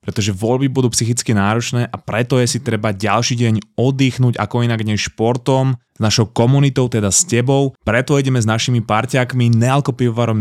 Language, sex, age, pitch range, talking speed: Slovak, male, 20-39, 105-125 Hz, 165 wpm